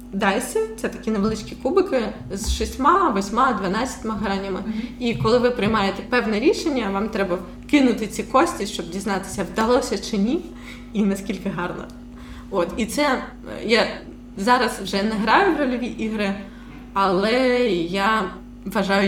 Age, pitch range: 20-39, 185-245 Hz